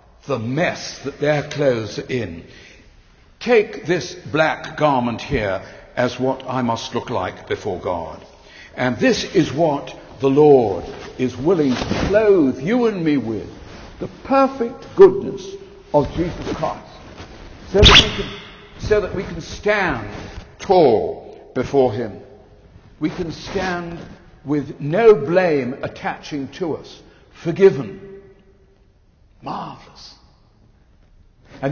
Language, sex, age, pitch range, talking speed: English, male, 60-79, 125-175 Hz, 115 wpm